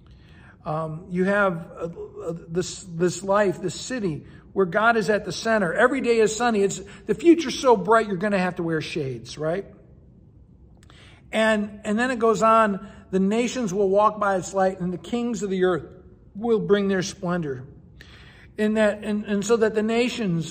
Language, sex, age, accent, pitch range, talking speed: English, male, 60-79, American, 185-220 Hz, 185 wpm